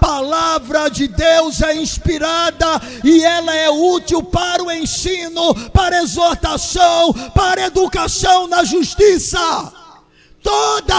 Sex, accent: male, Brazilian